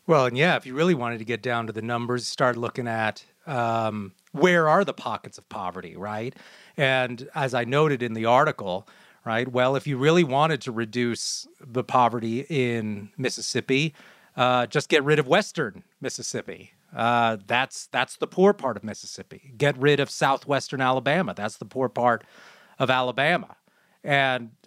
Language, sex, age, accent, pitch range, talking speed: English, male, 30-49, American, 120-150 Hz, 170 wpm